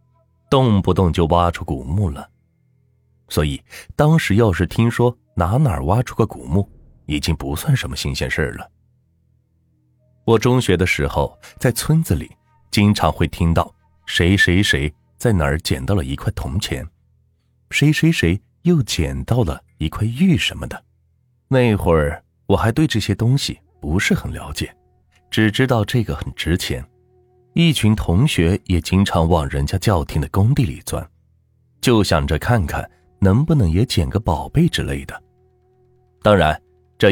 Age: 30-49